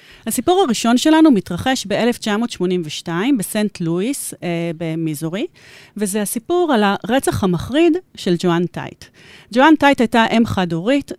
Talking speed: 115 wpm